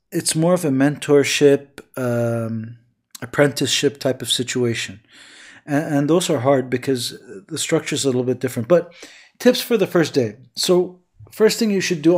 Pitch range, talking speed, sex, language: 130-155 Hz, 170 wpm, male, English